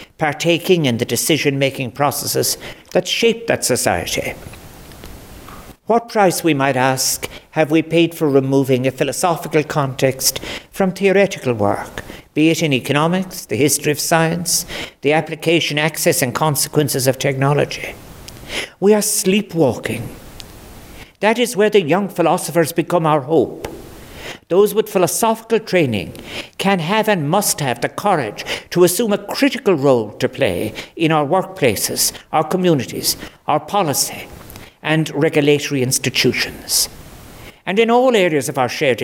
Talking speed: 135 wpm